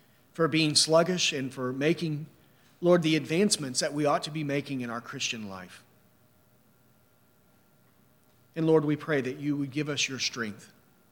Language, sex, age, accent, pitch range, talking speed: English, male, 40-59, American, 125-160 Hz, 160 wpm